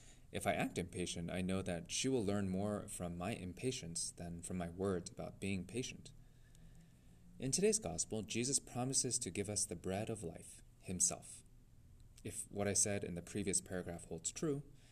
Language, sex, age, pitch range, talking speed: English, male, 20-39, 90-120 Hz, 175 wpm